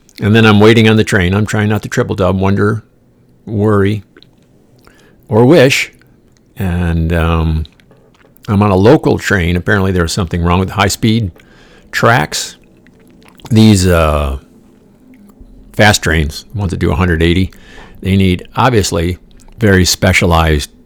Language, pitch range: English, 80-105 Hz